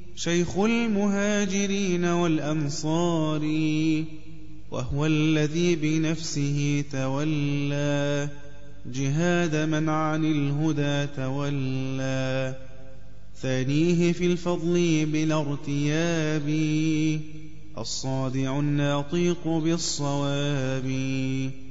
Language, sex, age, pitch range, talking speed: Arabic, male, 20-39, 140-175 Hz, 55 wpm